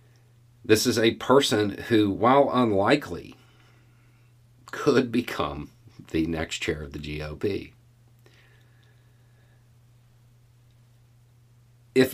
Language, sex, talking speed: English, male, 80 wpm